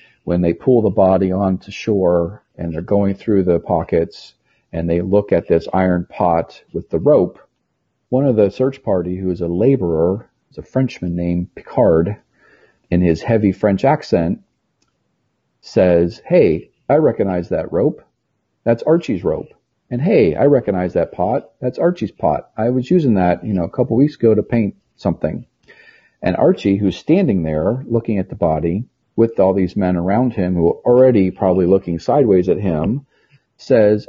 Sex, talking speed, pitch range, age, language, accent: male, 170 wpm, 85-115 Hz, 40-59, English, American